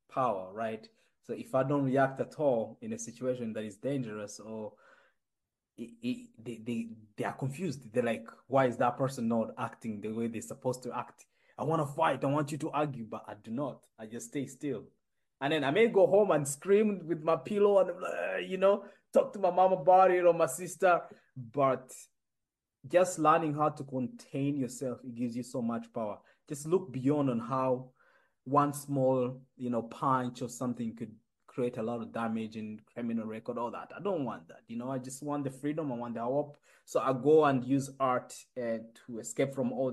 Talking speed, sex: 210 wpm, male